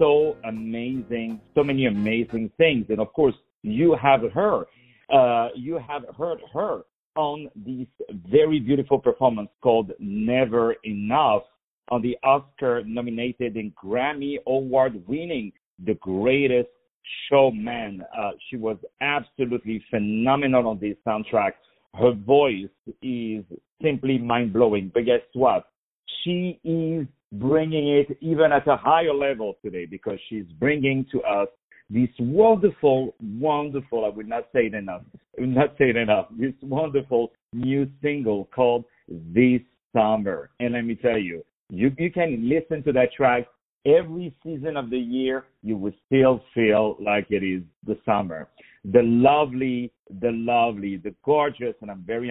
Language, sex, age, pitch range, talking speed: English, male, 50-69, 115-145 Hz, 140 wpm